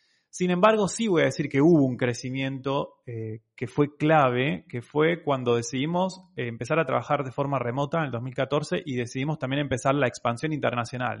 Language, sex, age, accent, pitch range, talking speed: Spanish, male, 20-39, Argentinian, 120-155 Hz, 190 wpm